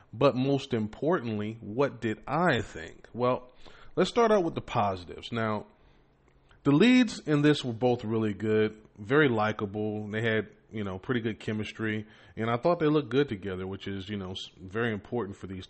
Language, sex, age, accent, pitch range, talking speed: English, male, 30-49, American, 105-125 Hz, 180 wpm